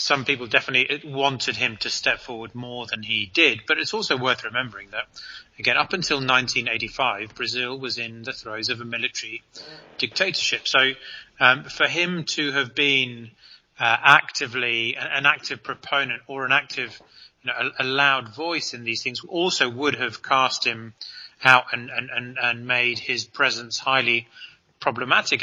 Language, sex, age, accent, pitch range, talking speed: English, male, 30-49, British, 115-135 Hz, 165 wpm